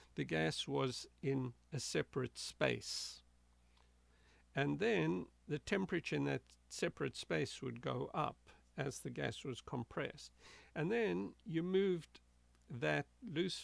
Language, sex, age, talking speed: English, male, 60-79, 130 wpm